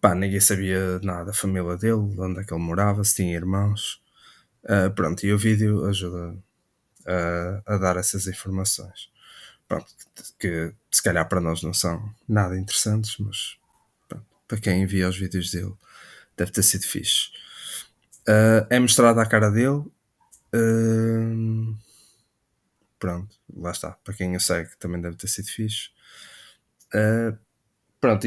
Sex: male